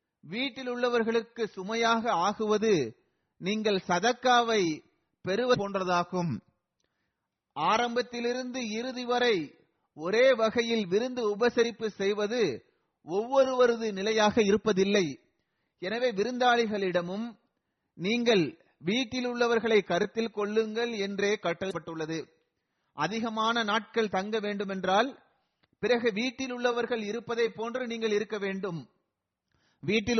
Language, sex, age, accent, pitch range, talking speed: Tamil, male, 30-49, native, 200-235 Hz, 80 wpm